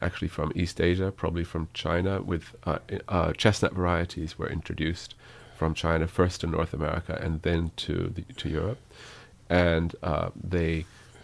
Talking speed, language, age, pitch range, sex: 155 wpm, English, 40-59, 80-100 Hz, male